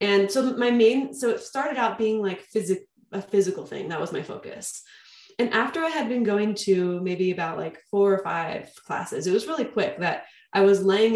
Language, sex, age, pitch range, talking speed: English, female, 20-39, 175-200 Hz, 210 wpm